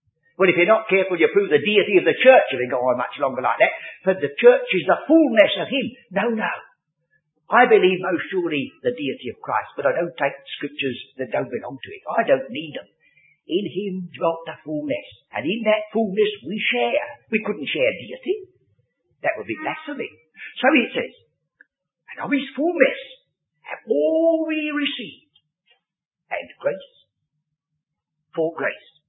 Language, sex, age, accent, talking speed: English, male, 50-69, British, 175 wpm